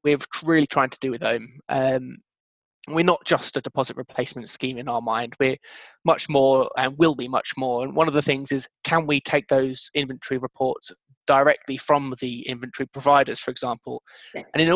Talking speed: 190 wpm